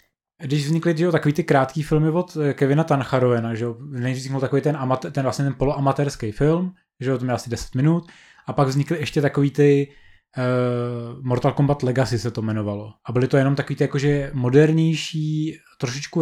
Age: 20-39